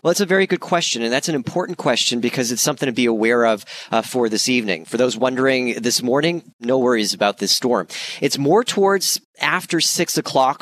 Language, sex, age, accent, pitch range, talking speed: English, male, 30-49, American, 110-140 Hz, 215 wpm